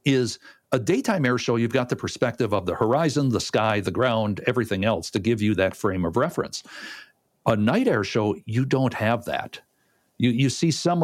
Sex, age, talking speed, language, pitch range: male, 60-79, 200 wpm, English, 95-125 Hz